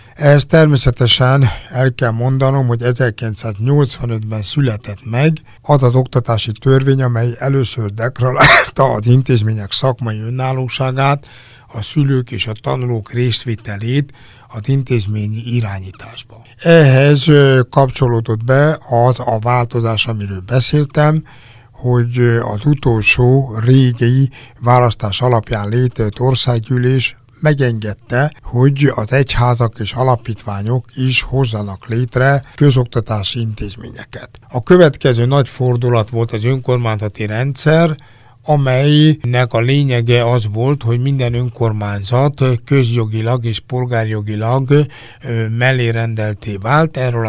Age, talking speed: 60-79, 100 wpm